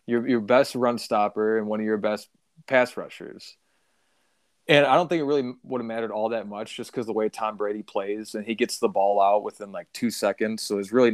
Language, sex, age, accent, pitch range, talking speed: English, male, 20-39, American, 105-125 Hz, 235 wpm